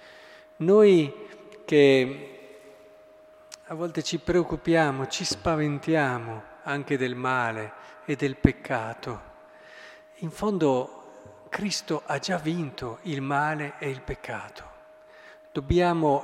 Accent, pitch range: native, 130-165 Hz